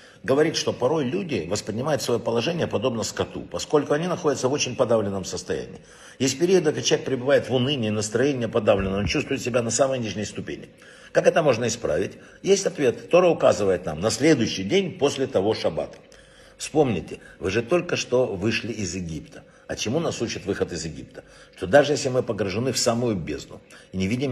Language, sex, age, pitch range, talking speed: Russian, male, 60-79, 115-140 Hz, 180 wpm